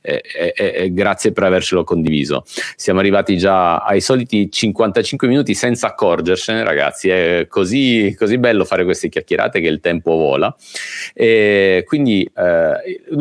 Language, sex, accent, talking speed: Italian, male, native, 125 wpm